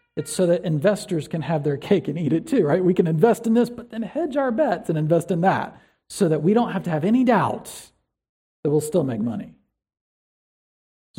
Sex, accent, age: male, American, 40-59